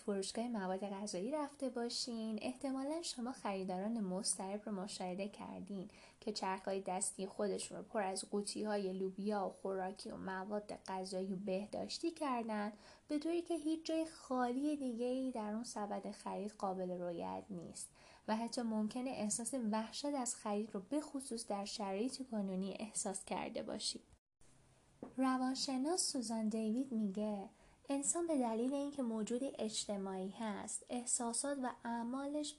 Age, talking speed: 10-29, 130 wpm